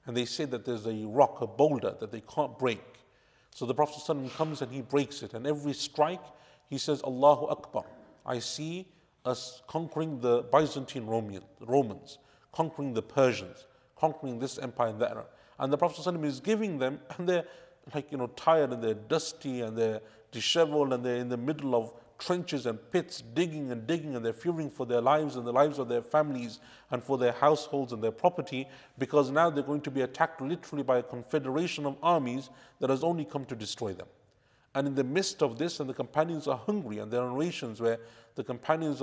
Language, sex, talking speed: English, male, 205 wpm